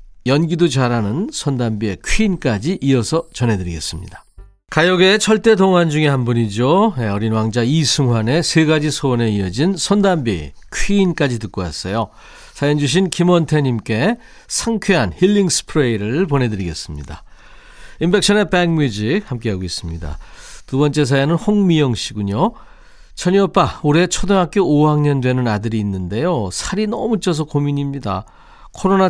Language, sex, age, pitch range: Korean, male, 40-59, 115-180 Hz